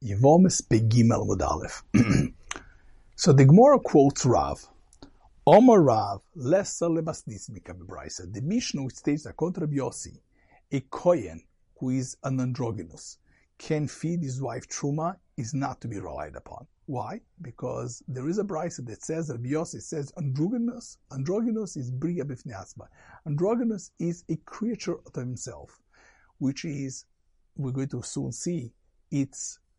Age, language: 50-69, English